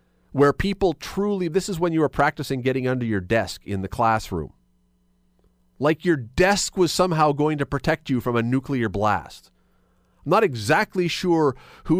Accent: American